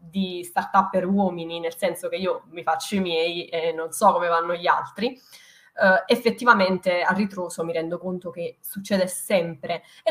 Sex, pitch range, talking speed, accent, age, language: female, 170-195 Hz, 180 wpm, native, 20-39, Italian